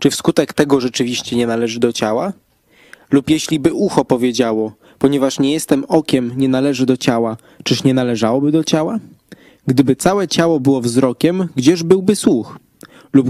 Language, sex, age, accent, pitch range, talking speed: Polish, male, 20-39, native, 130-165 Hz, 160 wpm